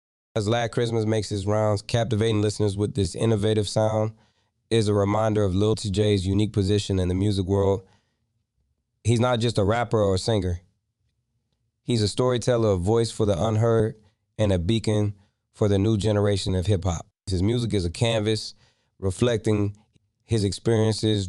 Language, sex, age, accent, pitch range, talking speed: English, male, 20-39, American, 95-110 Hz, 165 wpm